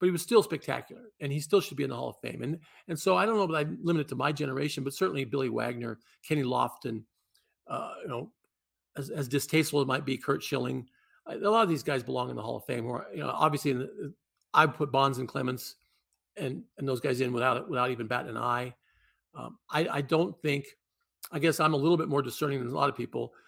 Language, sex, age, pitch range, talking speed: English, male, 50-69, 130-165 Hz, 250 wpm